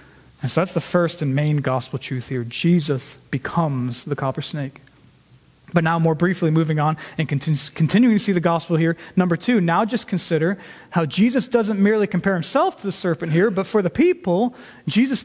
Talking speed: 190 wpm